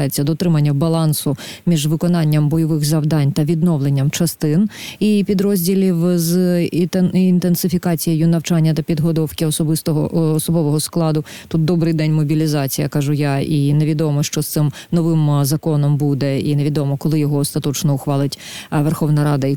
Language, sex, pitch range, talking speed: Ukrainian, female, 145-170 Hz, 130 wpm